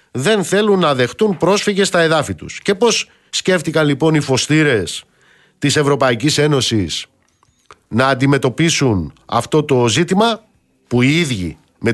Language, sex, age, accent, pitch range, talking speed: Greek, male, 50-69, native, 130-200 Hz, 130 wpm